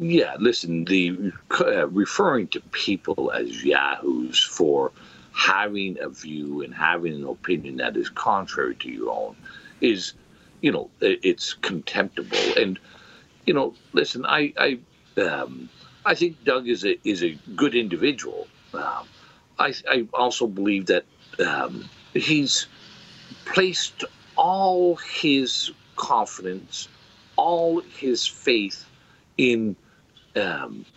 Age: 60-79